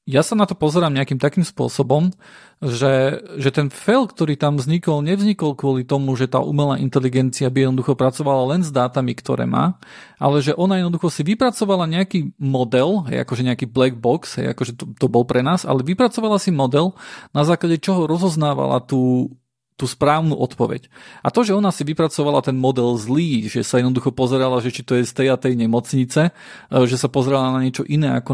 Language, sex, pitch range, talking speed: Slovak, male, 125-160 Hz, 190 wpm